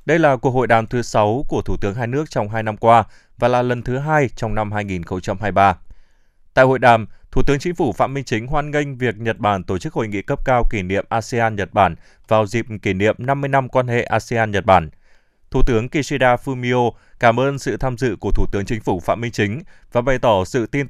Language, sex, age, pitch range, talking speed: Vietnamese, male, 20-39, 105-135 Hz, 240 wpm